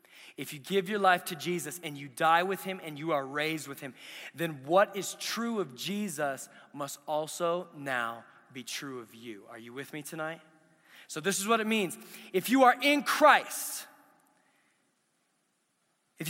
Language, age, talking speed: English, 20-39, 175 wpm